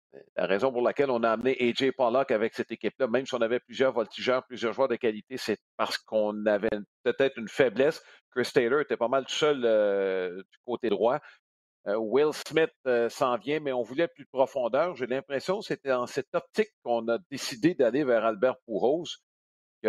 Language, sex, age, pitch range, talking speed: French, male, 50-69, 110-150 Hz, 195 wpm